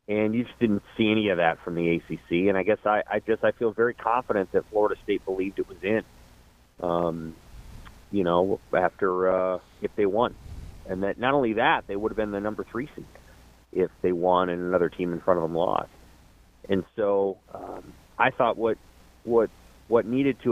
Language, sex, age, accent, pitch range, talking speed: English, male, 30-49, American, 90-120 Hz, 205 wpm